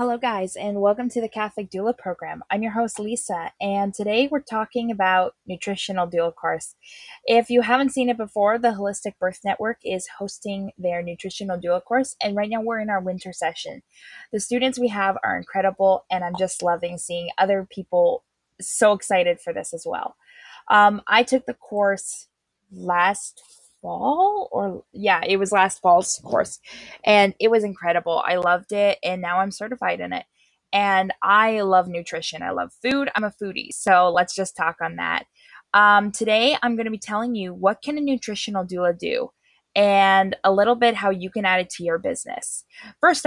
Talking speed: 185 wpm